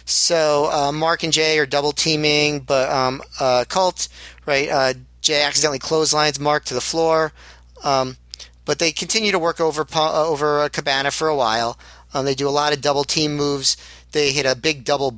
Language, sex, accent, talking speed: English, male, American, 190 wpm